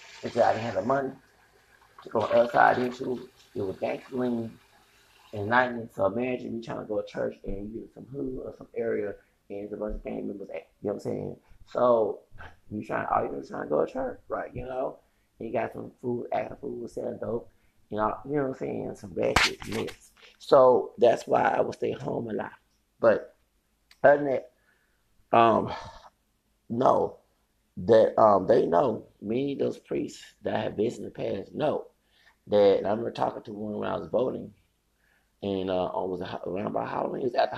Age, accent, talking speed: 30-49, American, 200 wpm